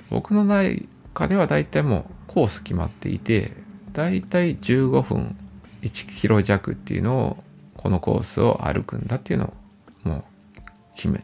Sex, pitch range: male, 95-125 Hz